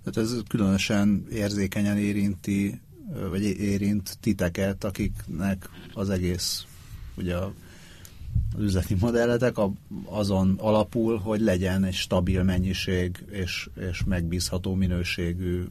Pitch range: 90-105 Hz